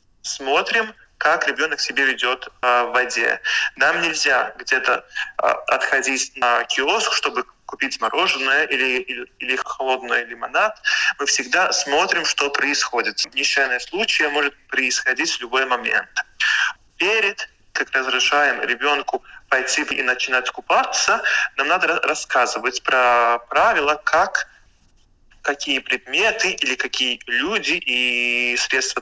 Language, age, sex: Russian, 20-39, male